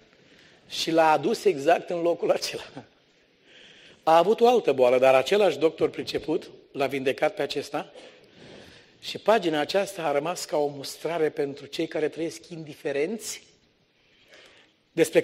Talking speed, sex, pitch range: 135 wpm, male, 150-220 Hz